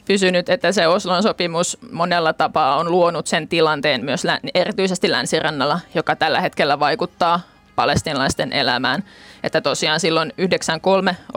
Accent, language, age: native, Finnish, 20-39